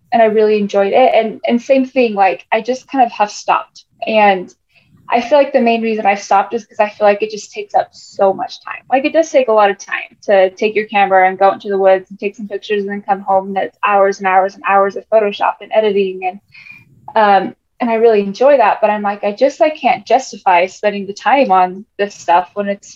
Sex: female